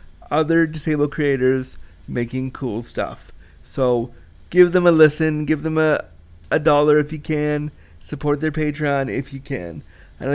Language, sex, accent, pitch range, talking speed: English, male, American, 135-175 Hz, 150 wpm